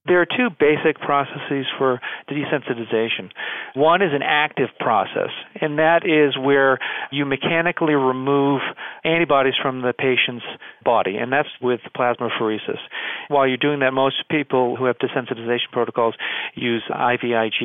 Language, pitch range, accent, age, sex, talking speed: English, 120-150 Hz, American, 40-59, male, 135 wpm